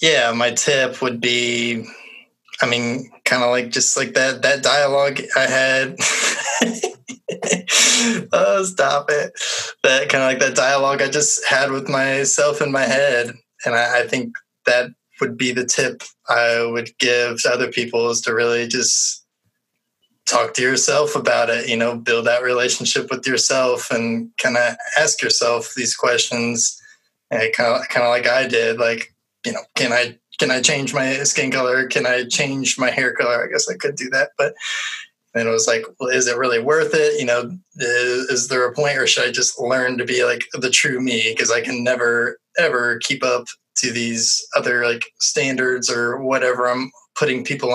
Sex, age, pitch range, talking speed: male, 20-39, 120-140 Hz, 185 wpm